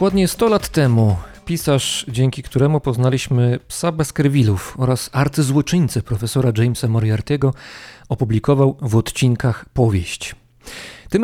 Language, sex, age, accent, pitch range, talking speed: Polish, male, 40-59, native, 115-145 Hz, 105 wpm